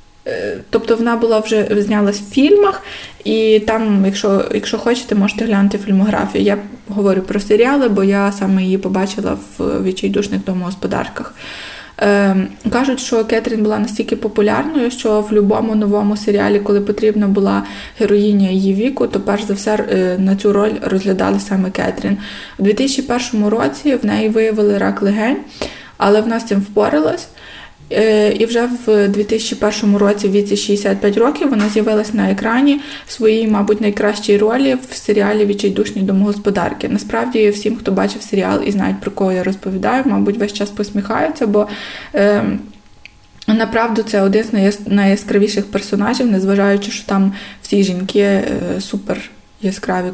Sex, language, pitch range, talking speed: female, Ukrainian, 200-220 Hz, 145 wpm